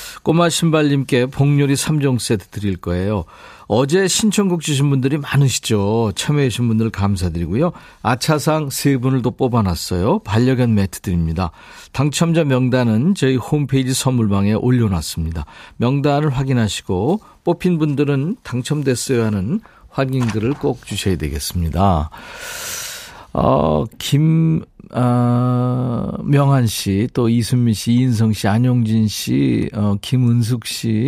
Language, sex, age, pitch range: Korean, male, 50-69, 110-150 Hz